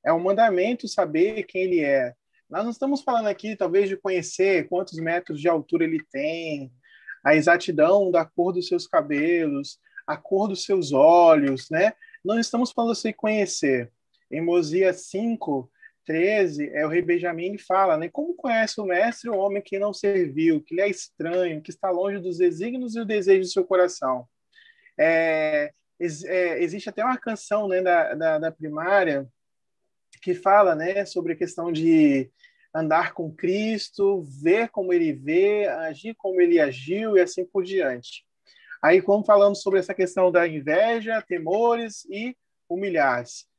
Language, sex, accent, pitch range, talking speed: Portuguese, male, Brazilian, 170-215 Hz, 160 wpm